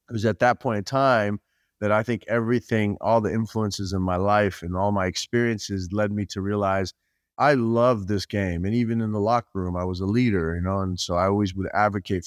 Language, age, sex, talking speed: English, 30-49, male, 230 wpm